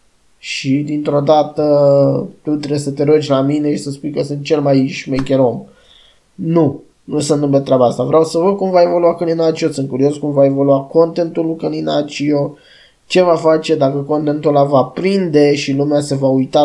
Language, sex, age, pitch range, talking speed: Romanian, male, 20-39, 140-155 Hz, 190 wpm